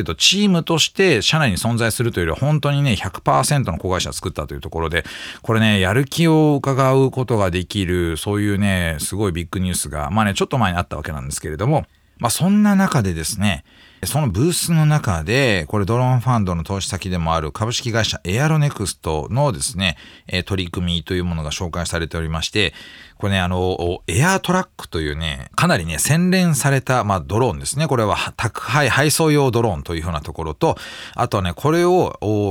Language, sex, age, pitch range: Japanese, male, 40-59, 85-135 Hz